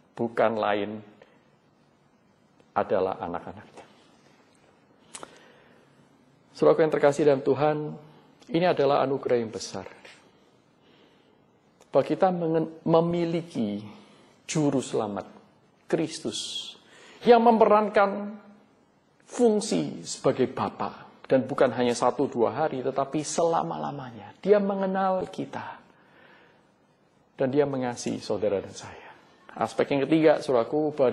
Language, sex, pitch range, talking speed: Indonesian, male, 140-190 Hz, 95 wpm